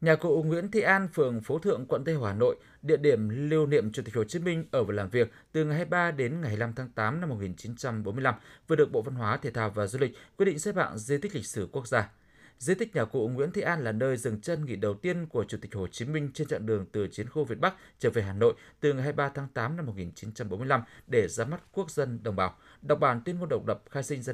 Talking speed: 270 wpm